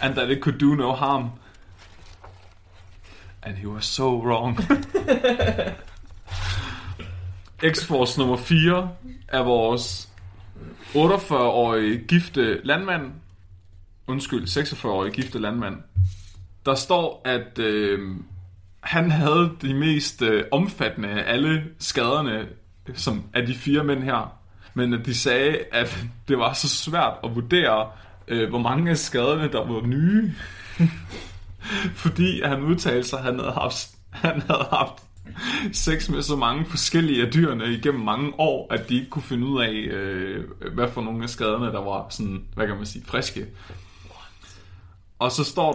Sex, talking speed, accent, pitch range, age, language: male, 140 wpm, native, 95-140 Hz, 30-49, Danish